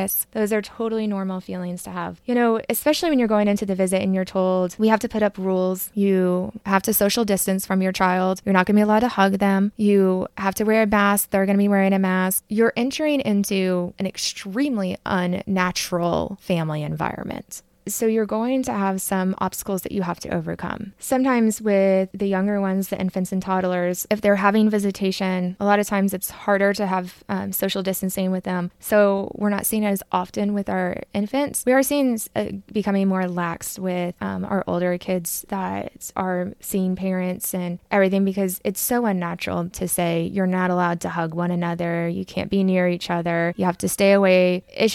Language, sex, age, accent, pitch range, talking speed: English, female, 20-39, American, 180-210 Hz, 205 wpm